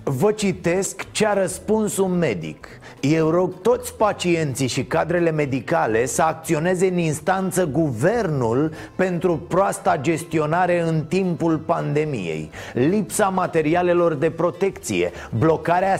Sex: male